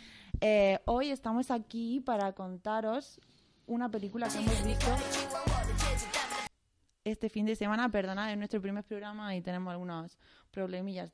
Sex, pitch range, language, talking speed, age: female, 195-235 Hz, Spanish, 130 wpm, 20-39